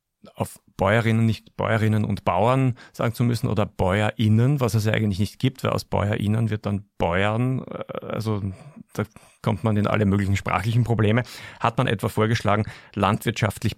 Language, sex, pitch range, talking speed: German, male, 95-110 Hz, 160 wpm